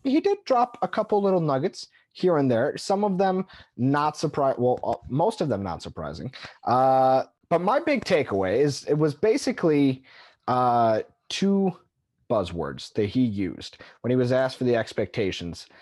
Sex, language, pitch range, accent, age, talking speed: male, English, 115-150 Hz, American, 30-49, 165 wpm